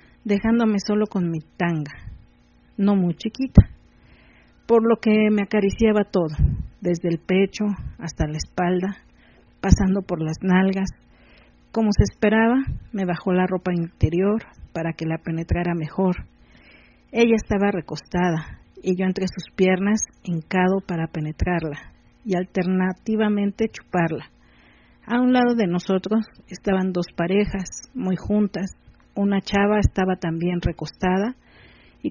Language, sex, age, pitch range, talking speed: Spanish, female, 50-69, 170-205 Hz, 125 wpm